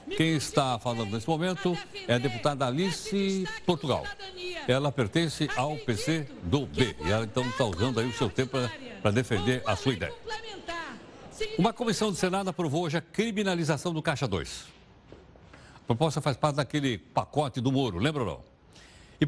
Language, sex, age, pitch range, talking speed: Portuguese, male, 60-79, 125-180 Hz, 165 wpm